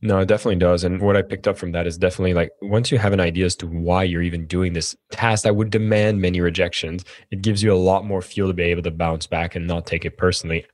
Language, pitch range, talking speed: English, 90-110 Hz, 280 wpm